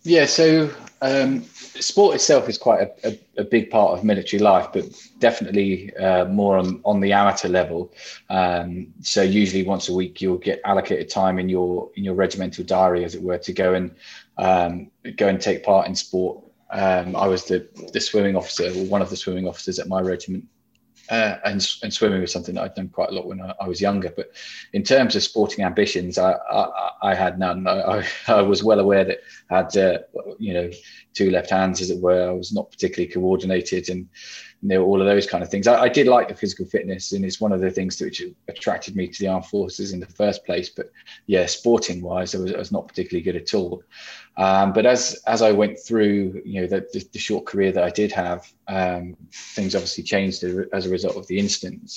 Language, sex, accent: English, male, British